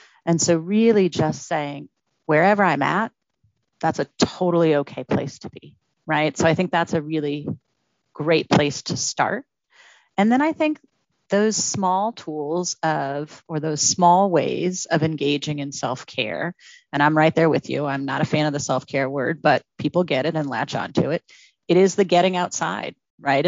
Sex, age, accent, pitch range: female, 30-49, American, 150-175 Hz